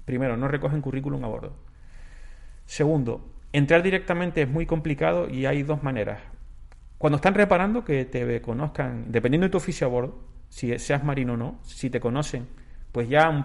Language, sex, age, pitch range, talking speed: Spanish, male, 30-49, 120-155 Hz, 175 wpm